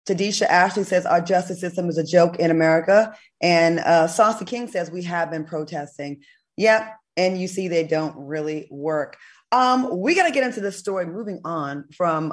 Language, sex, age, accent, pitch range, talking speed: English, female, 20-39, American, 165-215 Hz, 190 wpm